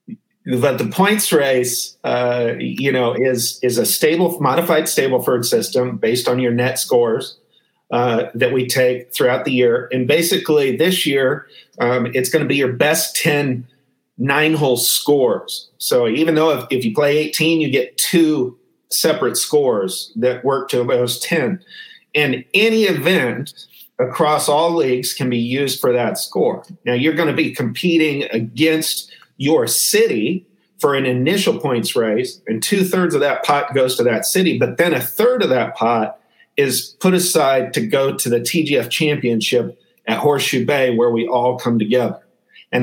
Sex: male